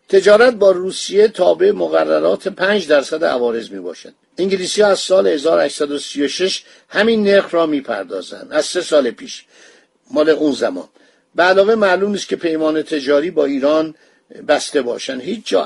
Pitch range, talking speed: 160-210 Hz, 140 wpm